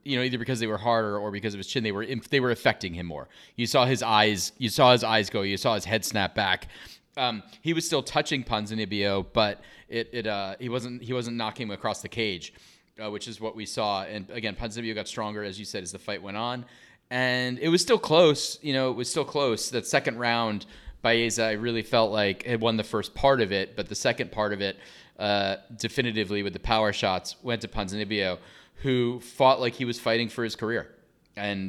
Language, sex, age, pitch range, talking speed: English, male, 30-49, 105-120 Hz, 235 wpm